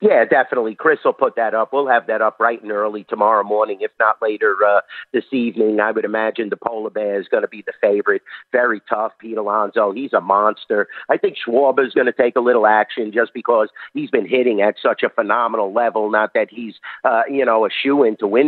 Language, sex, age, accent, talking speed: English, male, 50-69, American, 230 wpm